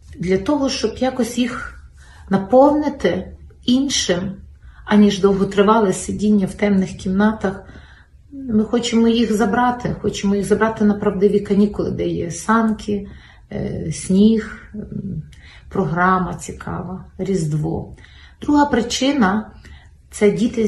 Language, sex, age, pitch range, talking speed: Ukrainian, female, 30-49, 185-220 Hz, 100 wpm